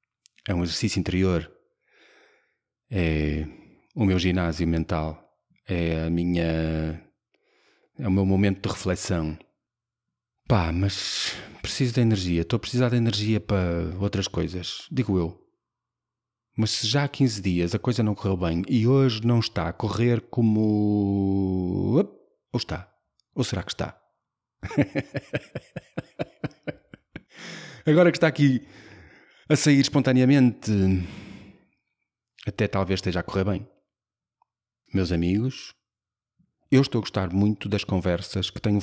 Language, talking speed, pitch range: Portuguese, 125 wpm, 90-120 Hz